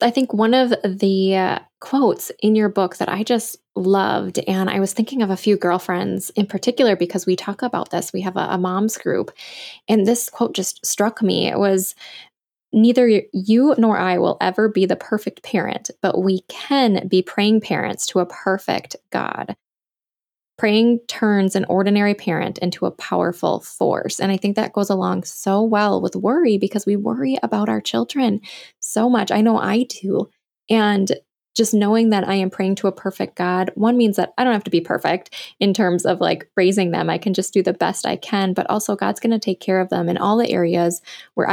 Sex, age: female, 10-29